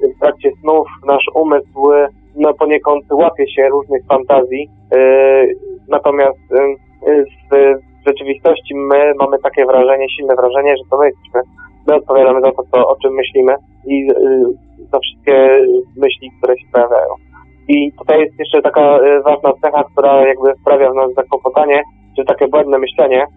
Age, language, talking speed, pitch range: 20-39, Polish, 155 wpm, 135-155 Hz